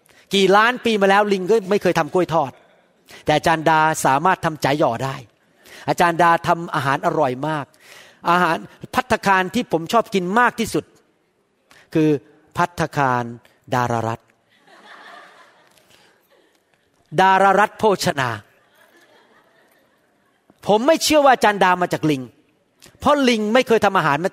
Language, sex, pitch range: Thai, male, 140-205 Hz